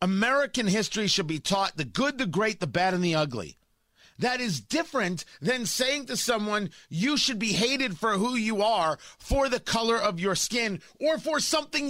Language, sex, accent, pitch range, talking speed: English, male, American, 180-260 Hz, 190 wpm